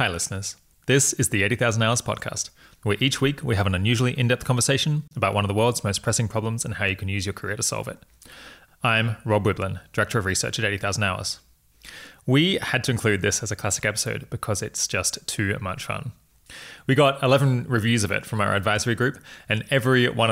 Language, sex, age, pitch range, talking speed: English, male, 20-39, 100-125 Hz, 215 wpm